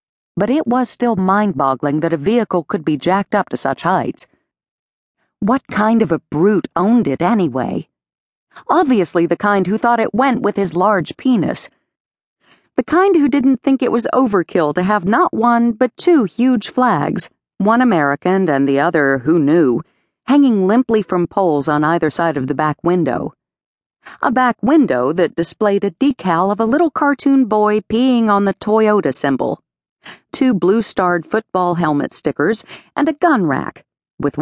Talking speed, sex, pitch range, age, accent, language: 165 wpm, female, 165-235 Hz, 40-59, American, English